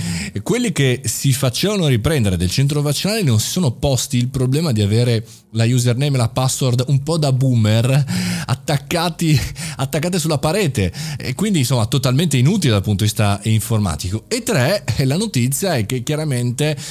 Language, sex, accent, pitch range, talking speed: Italian, male, native, 105-145 Hz, 160 wpm